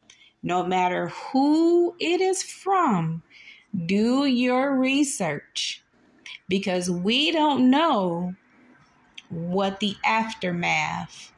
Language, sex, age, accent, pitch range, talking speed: English, female, 30-49, American, 170-235 Hz, 85 wpm